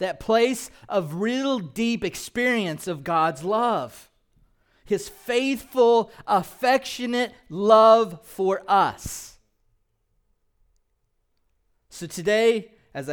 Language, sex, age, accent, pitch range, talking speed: English, male, 30-49, American, 110-150 Hz, 80 wpm